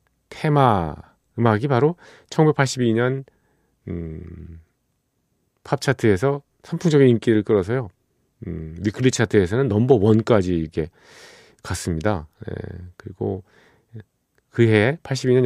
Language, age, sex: Korean, 40-59, male